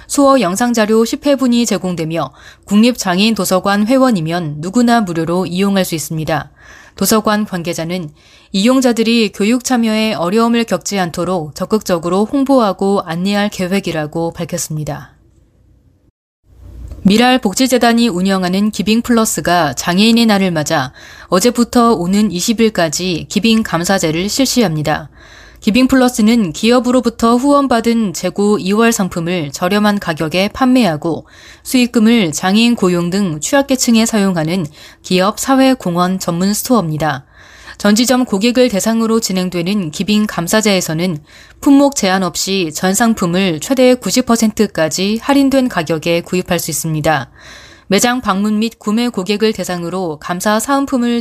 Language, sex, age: Korean, female, 20-39